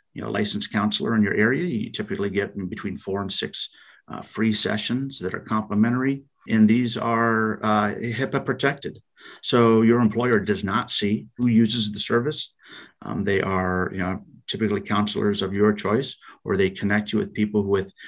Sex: male